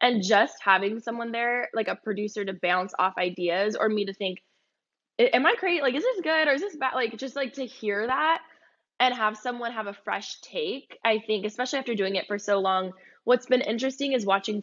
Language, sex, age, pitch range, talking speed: English, female, 10-29, 200-250 Hz, 220 wpm